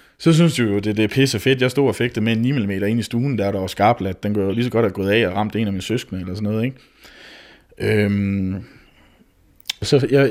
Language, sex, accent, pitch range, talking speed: Danish, male, native, 100-115 Hz, 280 wpm